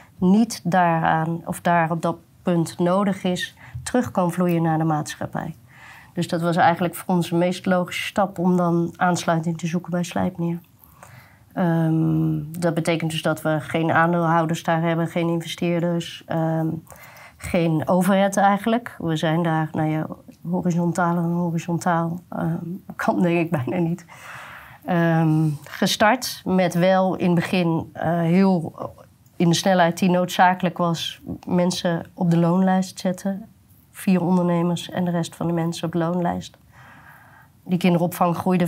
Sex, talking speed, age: female, 140 wpm, 30-49